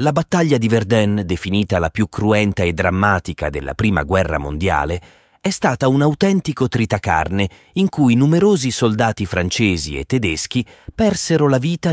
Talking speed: 145 wpm